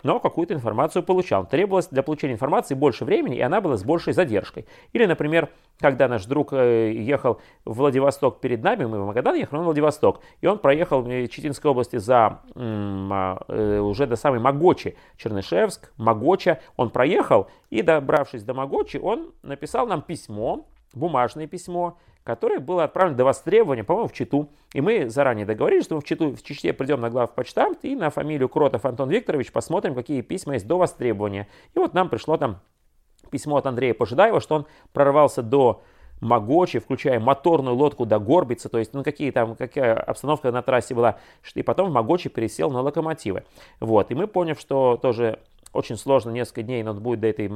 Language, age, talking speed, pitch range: Russian, 30-49, 180 wpm, 120-155 Hz